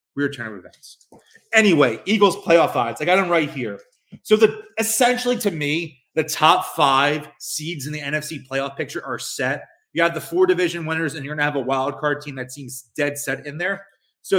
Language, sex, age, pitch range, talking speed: English, male, 30-49, 135-170 Hz, 215 wpm